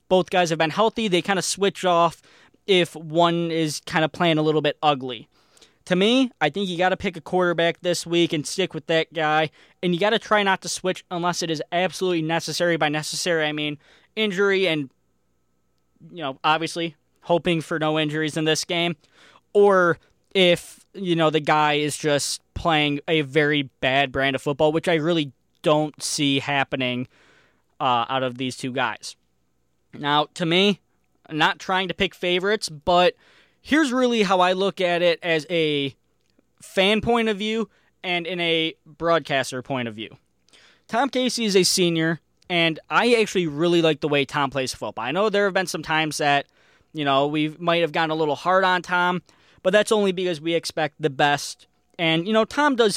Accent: American